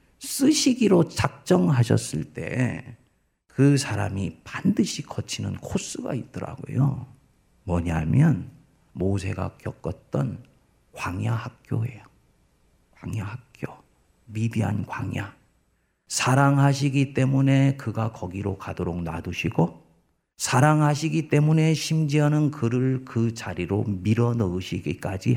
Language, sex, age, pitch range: Korean, male, 40-59, 110-175 Hz